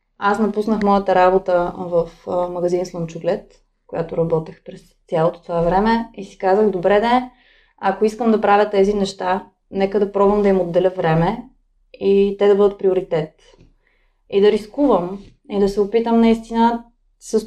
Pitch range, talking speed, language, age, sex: 195-235 Hz, 155 wpm, Bulgarian, 20-39, female